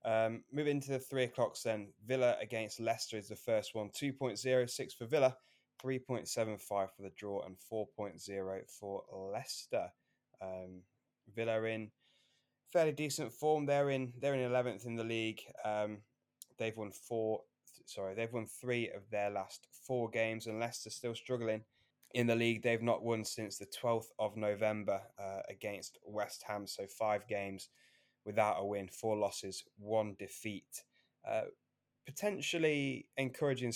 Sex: male